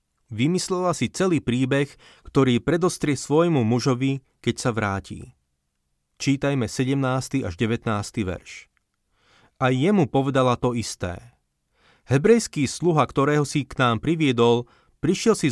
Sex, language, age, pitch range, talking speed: male, Slovak, 30-49, 120-150 Hz, 115 wpm